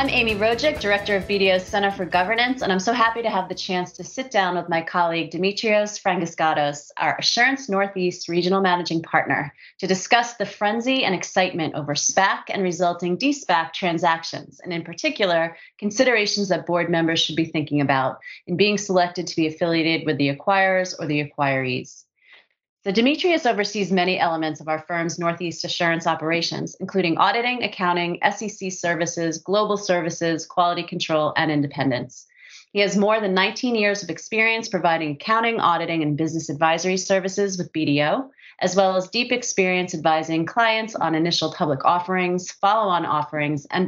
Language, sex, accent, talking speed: English, female, American, 165 wpm